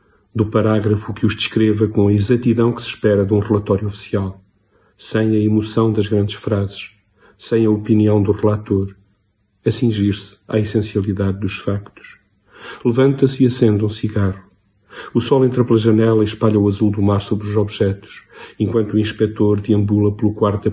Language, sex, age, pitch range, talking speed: Portuguese, male, 40-59, 100-110 Hz, 170 wpm